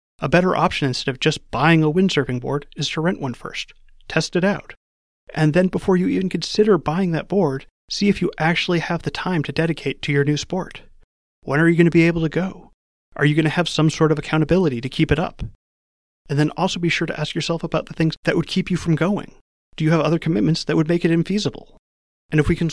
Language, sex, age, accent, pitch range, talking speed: English, male, 30-49, American, 140-170 Hz, 245 wpm